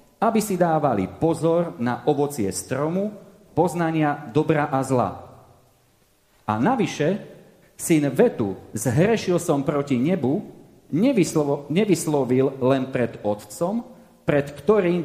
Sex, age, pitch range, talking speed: male, 40-59, 125-175 Hz, 100 wpm